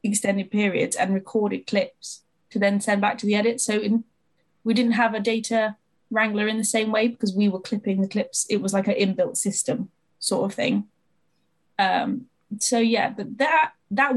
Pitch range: 195-230 Hz